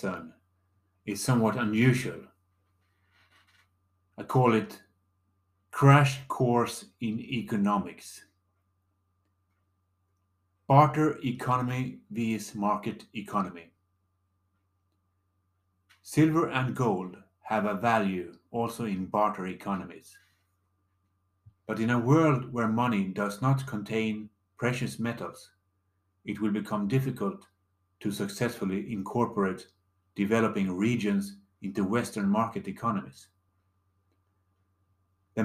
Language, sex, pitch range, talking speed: English, male, 90-115 Hz, 85 wpm